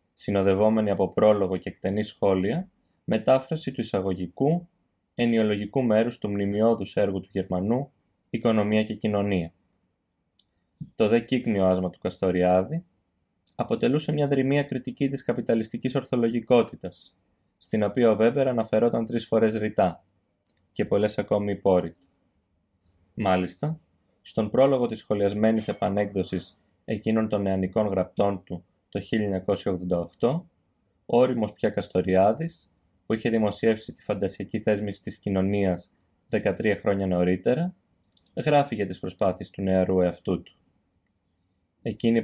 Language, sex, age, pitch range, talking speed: Greek, male, 20-39, 95-115 Hz, 110 wpm